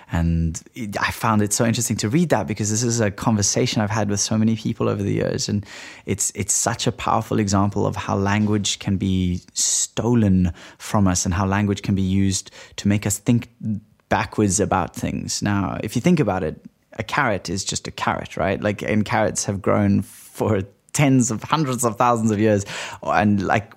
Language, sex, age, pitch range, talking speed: English, male, 20-39, 95-110 Hz, 200 wpm